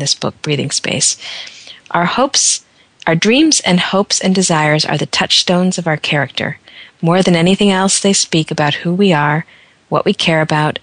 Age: 40-59